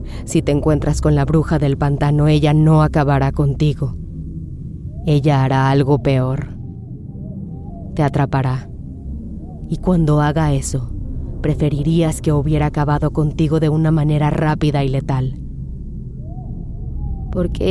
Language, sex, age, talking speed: Spanish, female, 20-39, 115 wpm